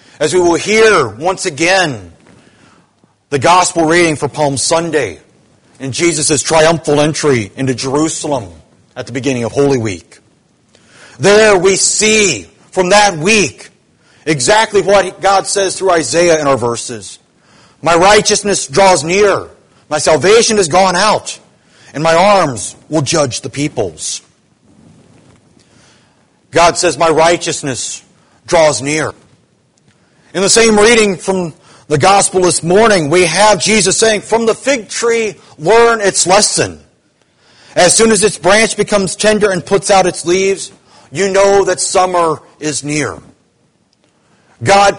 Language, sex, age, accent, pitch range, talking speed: English, male, 40-59, American, 150-200 Hz, 135 wpm